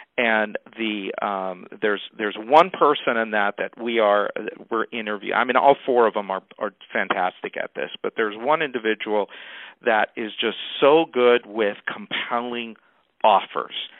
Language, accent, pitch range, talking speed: English, American, 110-160 Hz, 160 wpm